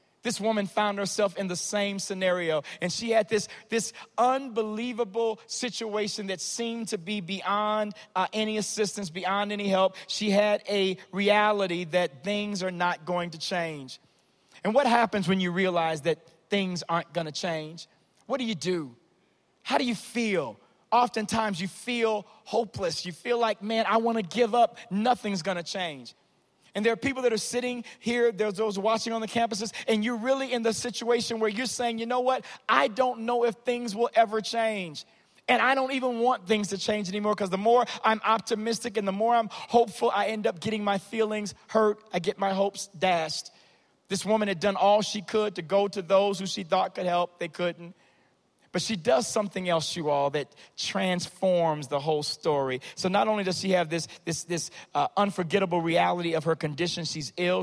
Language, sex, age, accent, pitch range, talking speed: English, male, 40-59, American, 175-225 Hz, 195 wpm